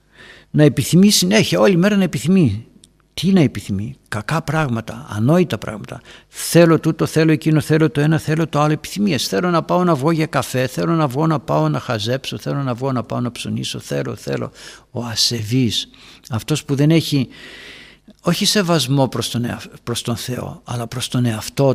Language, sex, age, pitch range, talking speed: Greek, male, 60-79, 120-165 Hz, 175 wpm